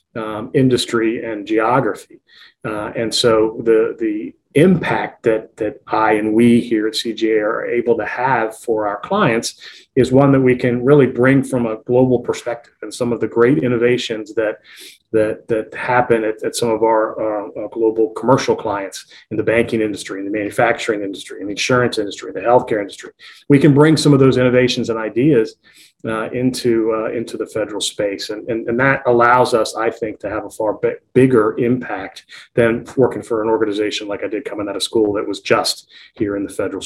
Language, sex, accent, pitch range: English, male, American, 110-130 Hz